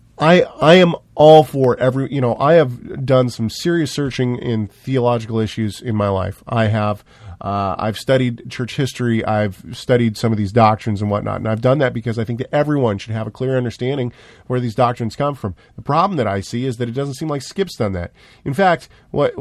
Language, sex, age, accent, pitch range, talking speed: English, male, 40-59, American, 115-145 Hz, 220 wpm